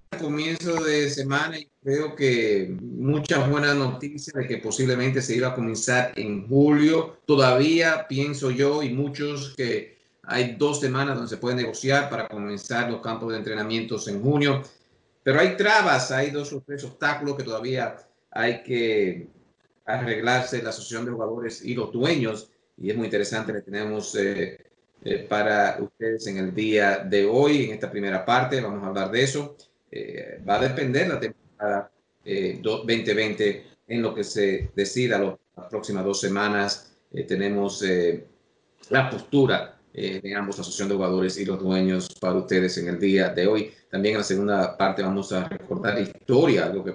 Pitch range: 100-135 Hz